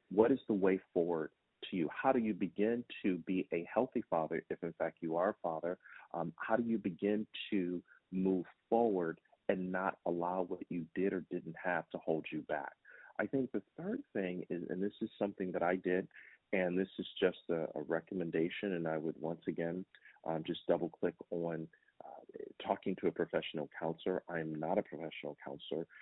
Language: English